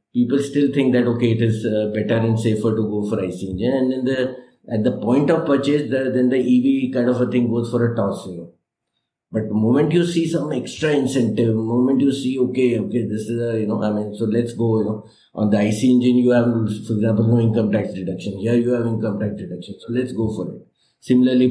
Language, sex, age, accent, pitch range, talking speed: English, male, 50-69, Indian, 110-130 Hz, 245 wpm